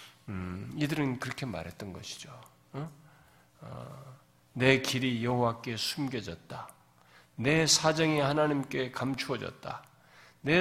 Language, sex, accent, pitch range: Korean, male, native, 120-185 Hz